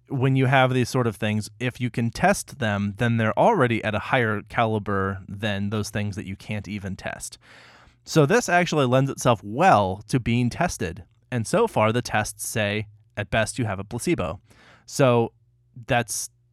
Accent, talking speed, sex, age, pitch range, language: American, 180 wpm, male, 20-39, 105-125 Hz, English